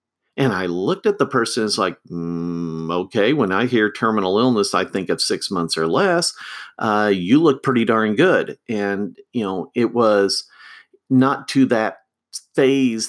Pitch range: 110-135 Hz